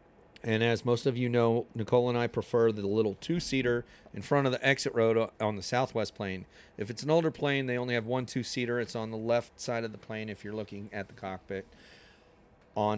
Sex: male